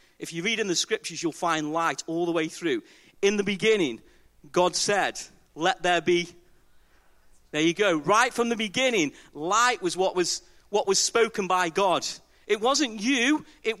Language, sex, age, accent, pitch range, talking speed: English, male, 40-59, British, 170-235 Hz, 180 wpm